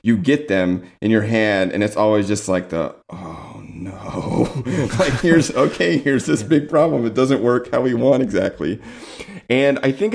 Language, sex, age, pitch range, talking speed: English, male, 30-49, 95-125 Hz, 185 wpm